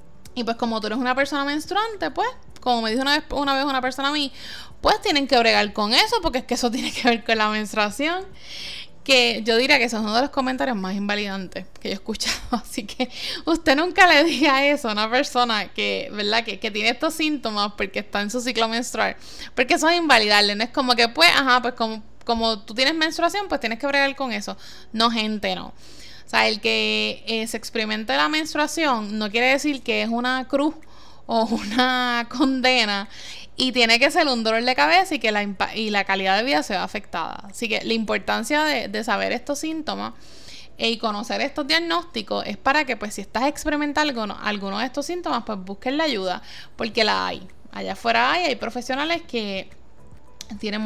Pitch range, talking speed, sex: 215-280 Hz, 210 wpm, female